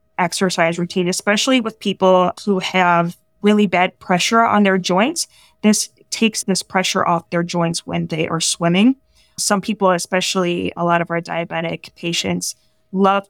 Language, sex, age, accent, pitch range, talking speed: English, female, 20-39, American, 175-205 Hz, 155 wpm